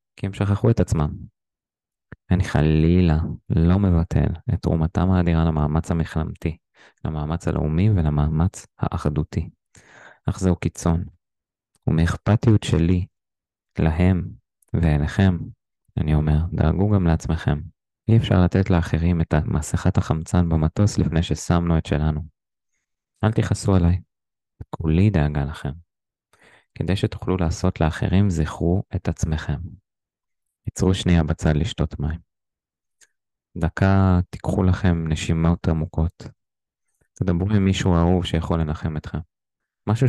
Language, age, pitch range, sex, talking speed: Hebrew, 20-39, 80-95 Hz, male, 110 wpm